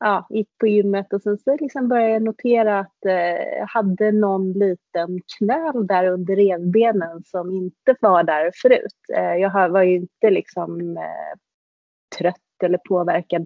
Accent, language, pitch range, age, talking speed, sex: native, Swedish, 175-205 Hz, 30-49, 145 wpm, female